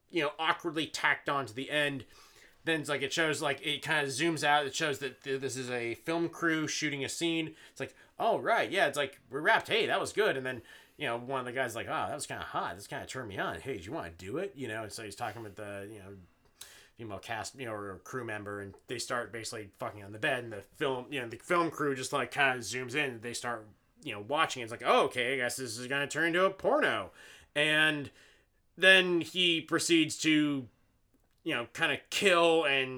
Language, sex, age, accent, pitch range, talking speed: English, male, 30-49, American, 130-165 Hz, 245 wpm